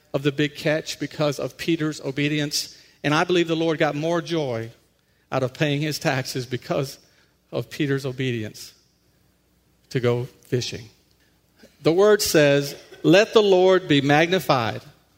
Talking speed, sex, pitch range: 140 wpm, male, 120-165 Hz